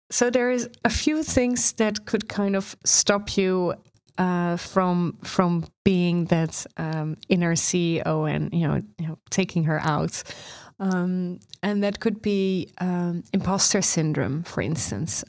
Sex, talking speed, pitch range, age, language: female, 145 wpm, 175-200 Hz, 30-49, English